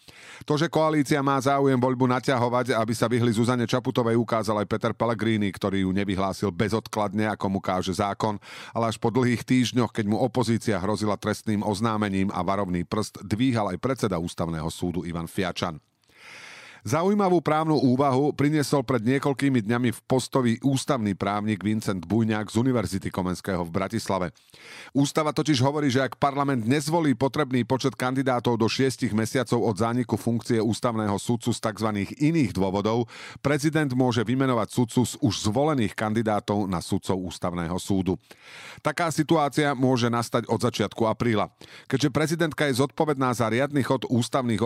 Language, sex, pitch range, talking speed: Slovak, male, 105-135 Hz, 150 wpm